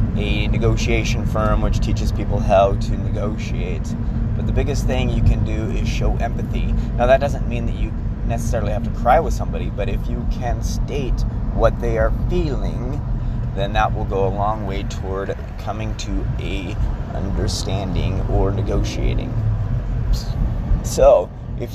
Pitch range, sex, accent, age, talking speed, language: 110-125 Hz, male, American, 30-49, 155 wpm, English